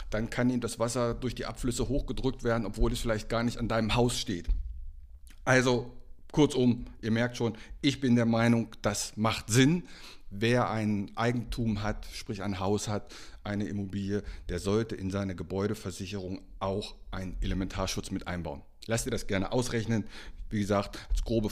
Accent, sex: German, male